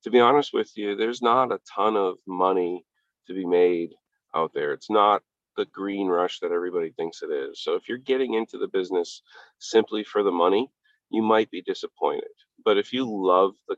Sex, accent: male, American